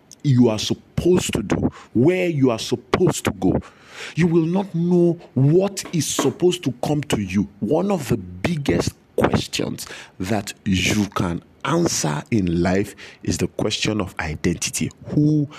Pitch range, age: 100-145 Hz, 50-69